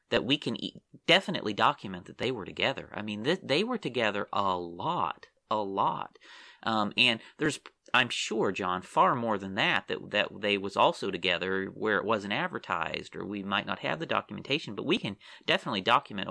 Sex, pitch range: male, 110-175 Hz